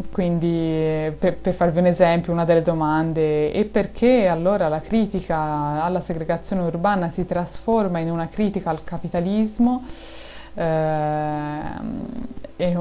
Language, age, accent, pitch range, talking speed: Italian, 20-39, native, 160-195 Hz, 115 wpm